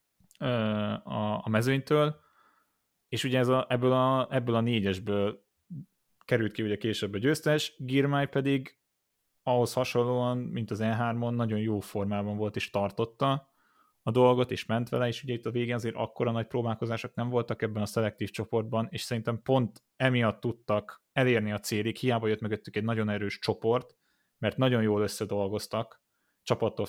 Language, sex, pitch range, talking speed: Hungarian, male, 100-120 Hz, 155 wpm